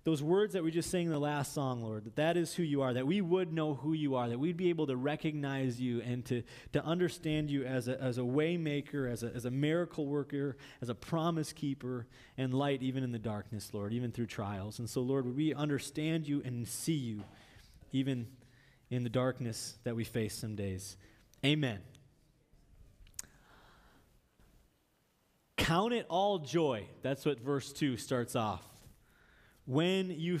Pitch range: 125-165 Hz